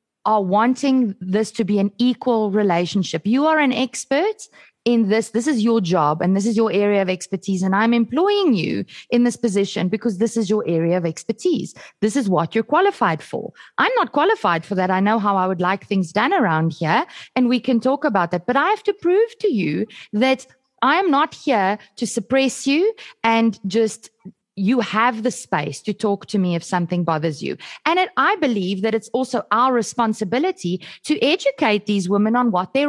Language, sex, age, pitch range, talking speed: English, female, 20-39, 205-280 Hz, 200 wpm